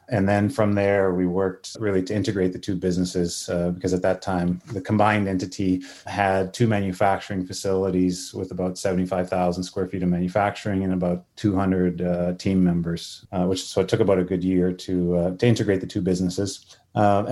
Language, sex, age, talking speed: English, male, 30-49, 190 wpm